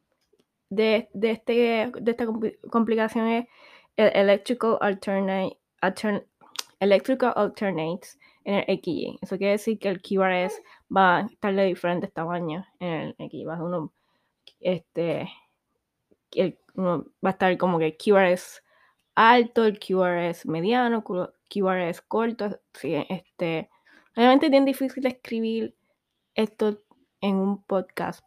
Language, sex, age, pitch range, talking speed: Spanish, female, 20-39, 185-225 Hz, 125 wpm